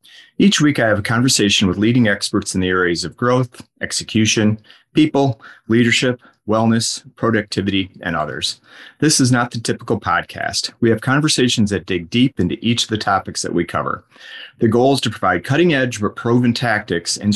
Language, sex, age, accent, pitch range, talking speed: English, male, 30-49, American, 100-125 Hz, 175 wpm